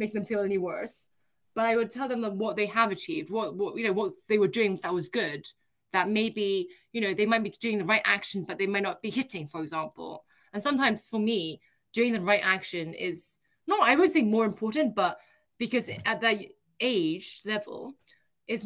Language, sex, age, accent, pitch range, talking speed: English, female, 20-39, British, 175-220 Hz, 210 wpm